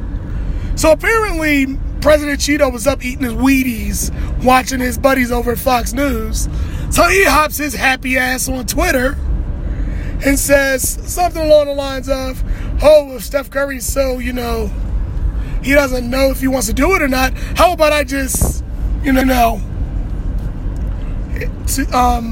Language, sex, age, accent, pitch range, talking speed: English, male, 20-39, American, 230-275 Hz, 150 wpm